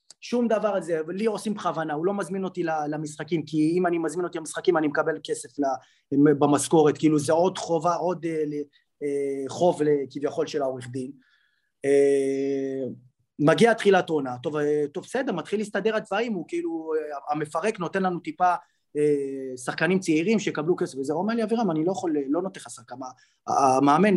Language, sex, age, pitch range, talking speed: Hebrew, male, 30-49, 145-190 Hz, 170 wpm